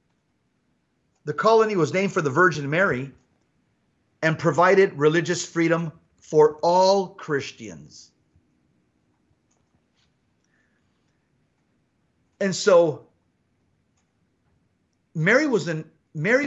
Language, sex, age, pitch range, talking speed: English, male, 40-59, 145-195 Hz, 65 wpm